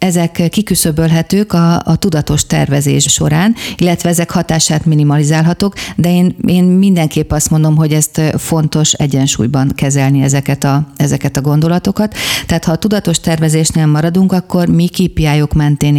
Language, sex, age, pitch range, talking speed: Hungarian, female, 40-59, 145-170 Hz, 140 wpm